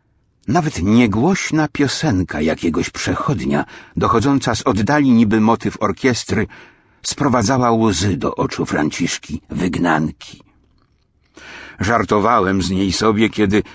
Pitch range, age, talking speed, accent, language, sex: 95-130 Hz, 60-79, 95 wpm, native, Polish, male